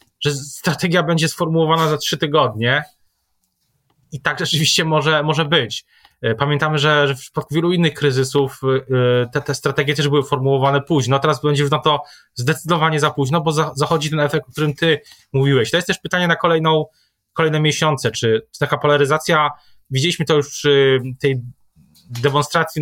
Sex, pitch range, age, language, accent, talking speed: male, 130-155 Hz, 20-39, Polish, native, 165 wpm